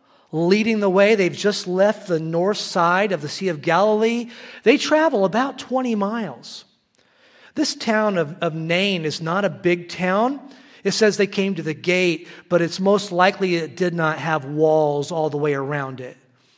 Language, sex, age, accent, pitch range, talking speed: English, male, 40-59, American, 155-205 Hz, 180 wpm